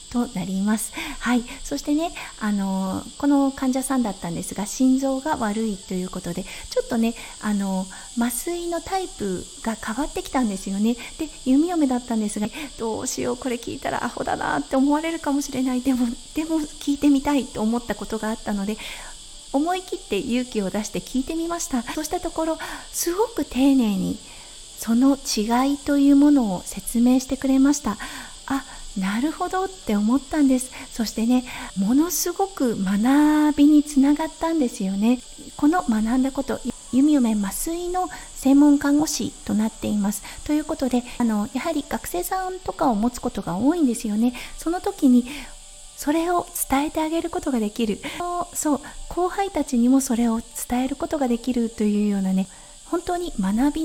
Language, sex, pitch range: Japanese, female, 225-305 Hz